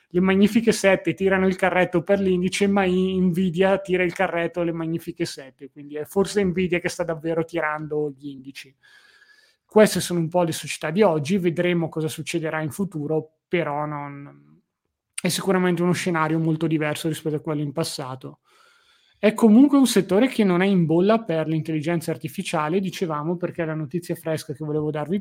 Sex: male